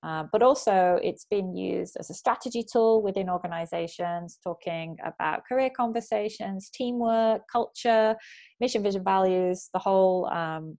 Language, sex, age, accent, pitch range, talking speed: English, female, 20-39, British, 160-220 Hz, 135 wpm